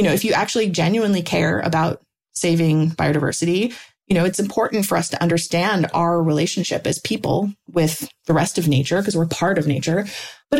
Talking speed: 185 wpm